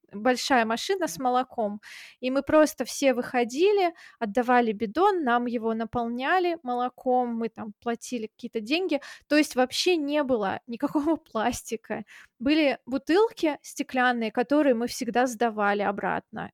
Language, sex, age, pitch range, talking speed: Russian, female, 20-39, 235-280 Hz, 125 wpm